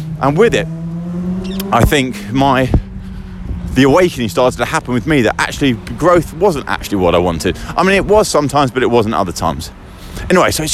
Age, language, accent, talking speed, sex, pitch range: 30-49, English, British, 190 wpm, male, 105-170 Hz